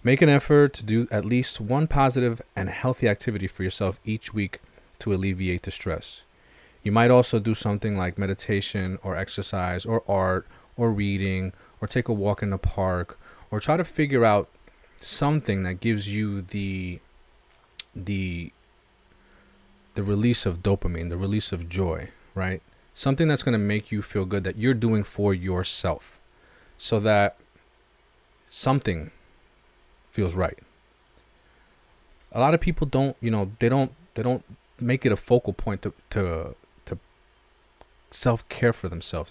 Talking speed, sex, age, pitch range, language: 155 wpm, male, 30-49, 95-115 Hz, English